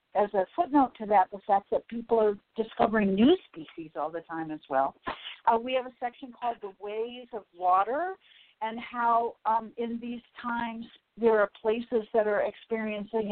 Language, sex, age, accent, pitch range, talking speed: English, female, 50-69, American, 195-235 Hz, 180 wpm